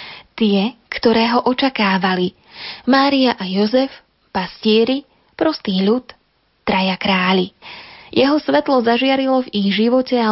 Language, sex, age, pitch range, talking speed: Slovak, female, 20-39, 200-245 Hz, 110 wpm